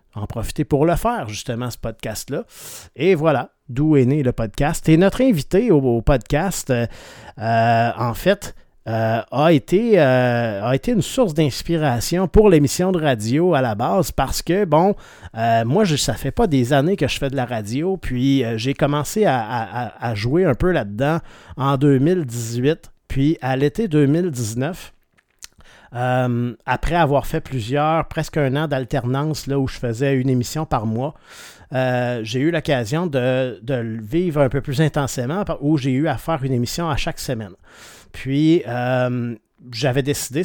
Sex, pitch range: male, 125-160 Hz